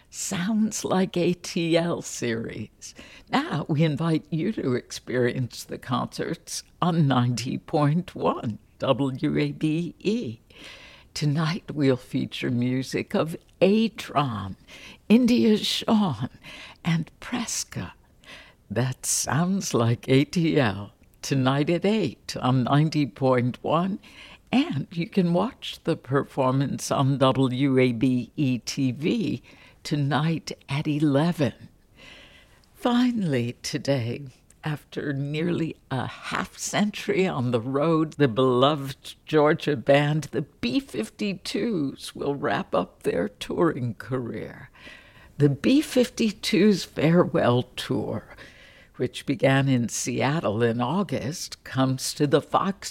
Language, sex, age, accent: English, female, 60-79, American